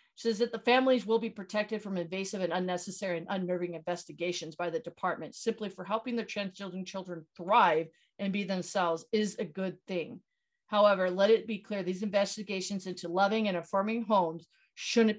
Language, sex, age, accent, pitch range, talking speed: English, female, 40-59, American, 180-215 Hz, 175 wpm